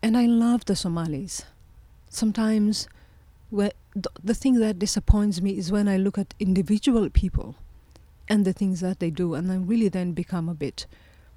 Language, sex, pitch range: English, female, 150-205 Hz